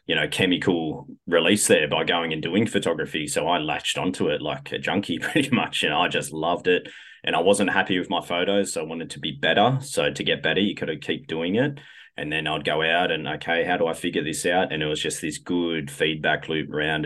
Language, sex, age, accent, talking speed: English, male, 20-39, Australian, 245 wpm